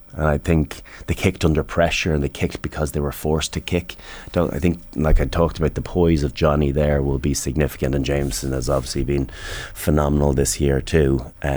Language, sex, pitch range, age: English, male, 70-80 Hz, 30-49